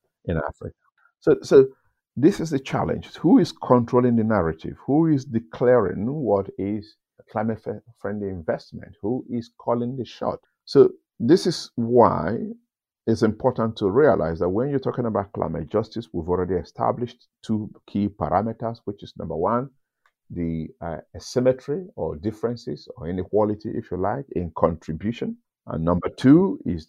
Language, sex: English, male